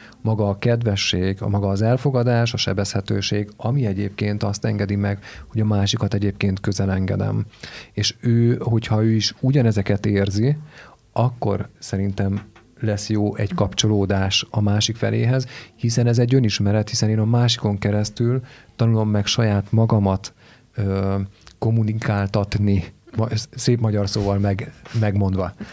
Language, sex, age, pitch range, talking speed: Hungarian, male, 40-59, 100-120 Hz, 130 wpm